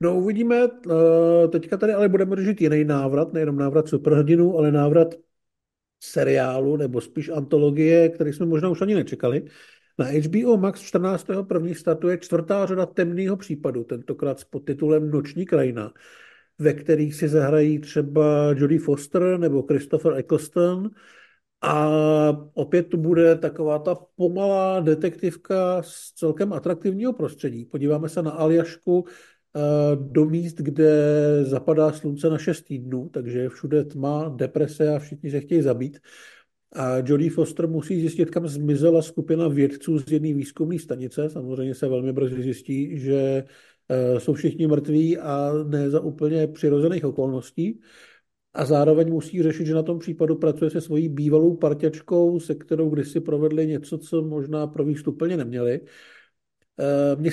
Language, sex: Czech, male